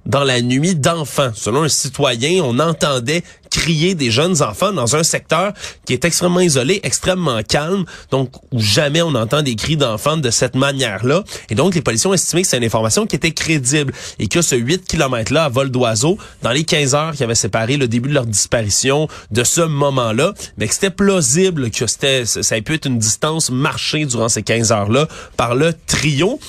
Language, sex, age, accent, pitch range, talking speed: French, male, 30-49, Canadian, 120-165 Hz, 200 wpm